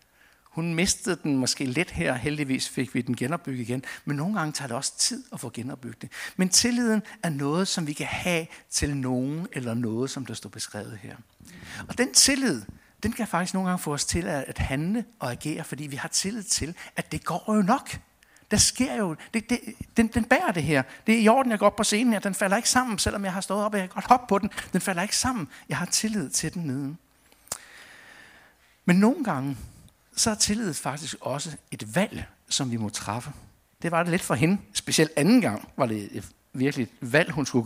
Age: 60-79